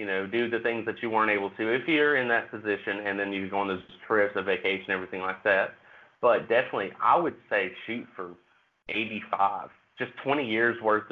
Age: 30-49